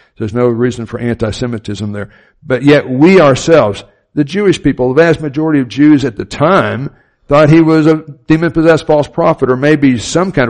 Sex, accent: male, American